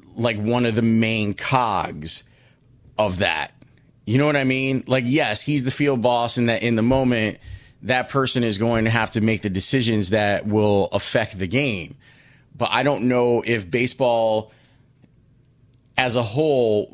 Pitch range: 105-130 Hz